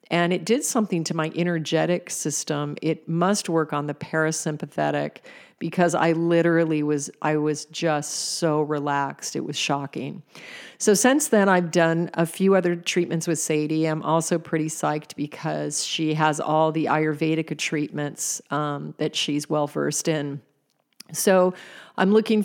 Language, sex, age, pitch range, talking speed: English, female, 40-59, 150-170 Hz, 150 wpm